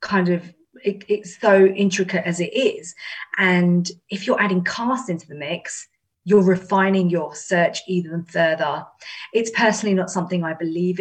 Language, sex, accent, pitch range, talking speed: English, female, British, 175-205 Hz, 155 wpm